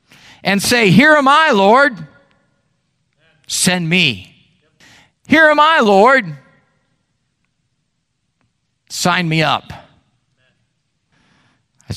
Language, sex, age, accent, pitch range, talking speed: English, male, 50-69, American, 125-170 Hz, 80 wpm